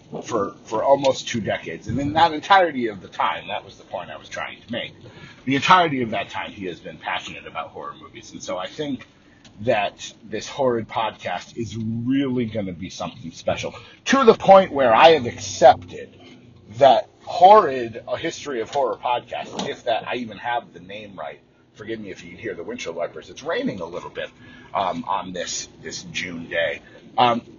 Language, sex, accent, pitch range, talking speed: English, male, American, 110-155 Hz, 195 wpm